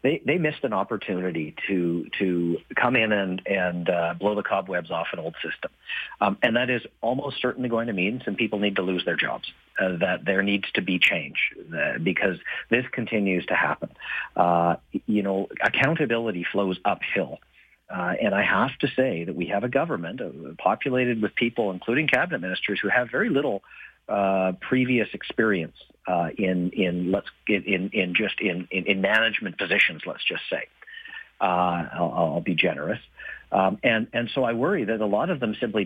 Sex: male